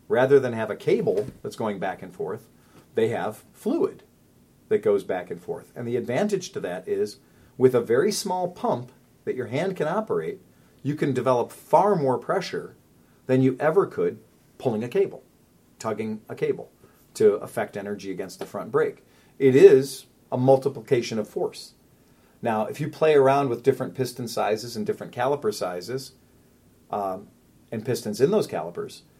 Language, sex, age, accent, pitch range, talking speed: English, male, 40-59, American, 120-195 Hz, 170 wpm